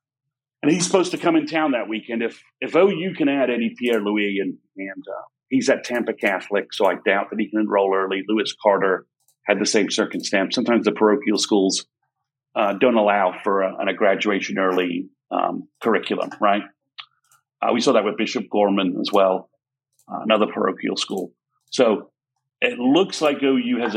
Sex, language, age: male, English, 40-59